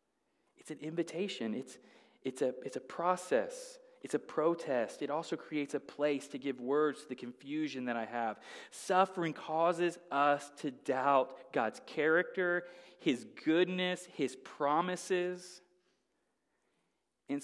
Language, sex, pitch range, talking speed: English, male, 160-230 Hz, 130 wpm